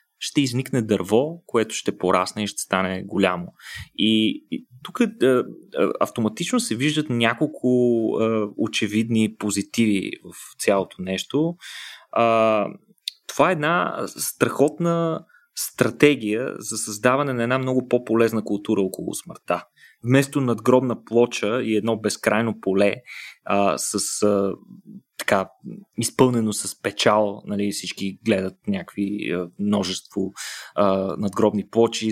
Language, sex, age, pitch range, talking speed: Bulgarian, male, 20-39, 100-130 Hz, 105 wpm